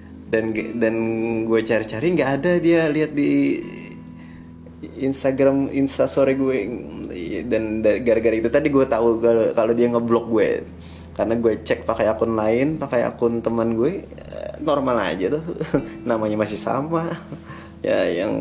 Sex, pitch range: male, 110-120 Hz